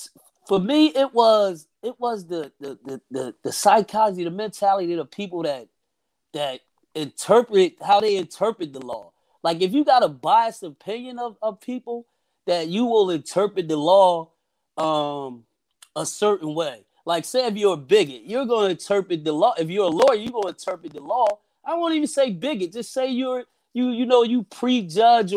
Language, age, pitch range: English, 30-49, 180-245 Hz